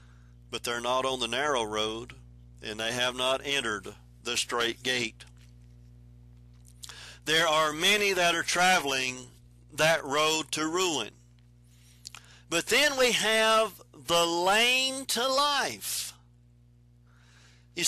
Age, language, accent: 50-69, English, American